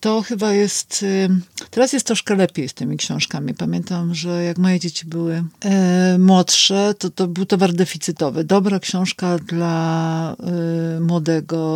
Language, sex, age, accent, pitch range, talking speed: Polish, female, 50-69, native, 150-175 Hz, 135 wpm